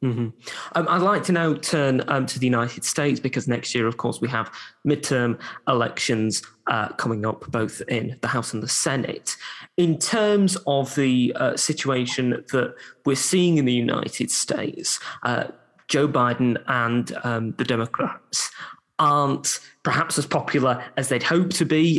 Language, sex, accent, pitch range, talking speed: English, male, British, 120-145 Hz, 165 wpm